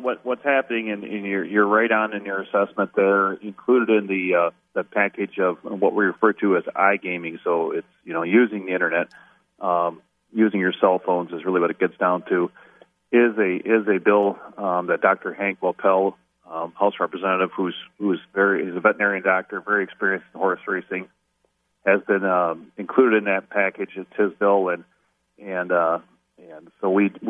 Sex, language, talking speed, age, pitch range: male, English, 195 wpm, 40-59, 95-110 Hz